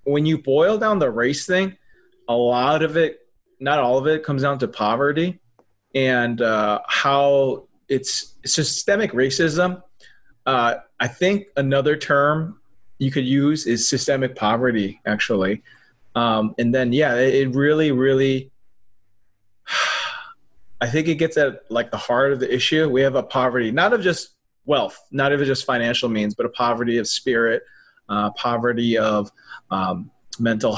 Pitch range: 115-145 Hz